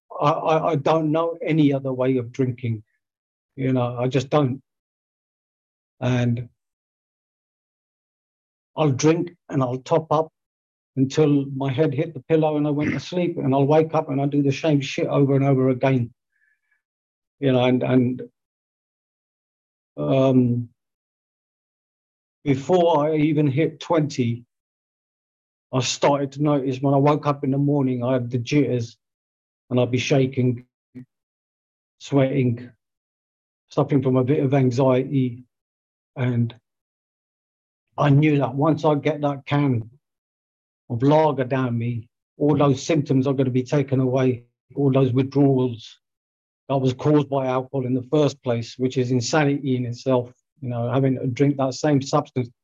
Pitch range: 120-145 Hz